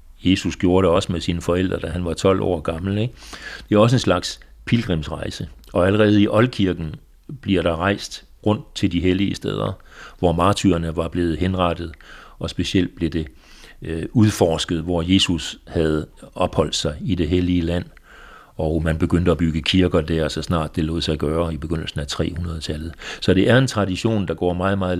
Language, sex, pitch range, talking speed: Danish, male, 85-100 Hz, 190 wpm